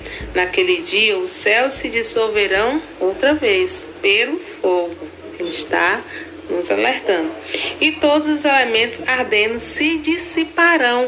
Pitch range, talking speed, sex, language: 215-340 Hz, 115 wpm, female, Portuguese